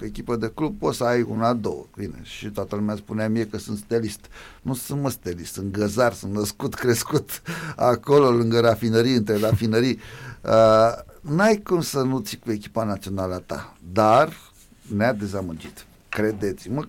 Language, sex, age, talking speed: Romanian, male, 60-79, 160 wpm